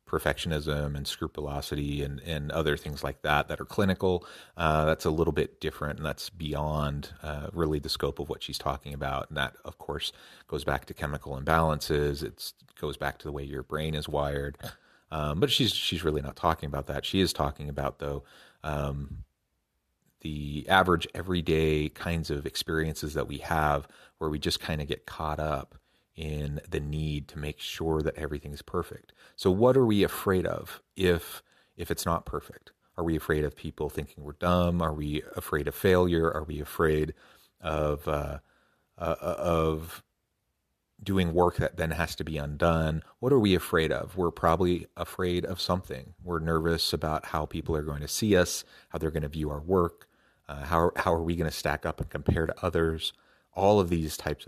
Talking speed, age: 190 wpm, 30-49